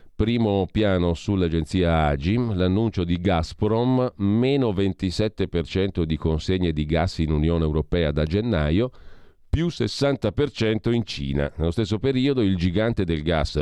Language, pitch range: Italian, 80-110 Hz